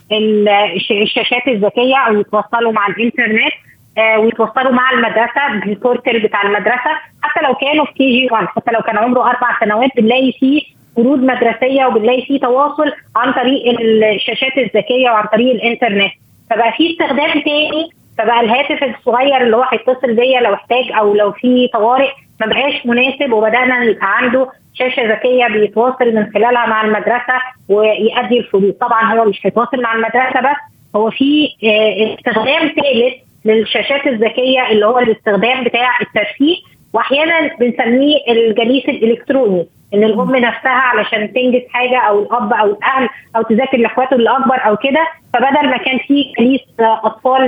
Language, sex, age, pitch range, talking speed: Arabic, female, 20-39, 220-265 Hz, 145 wpm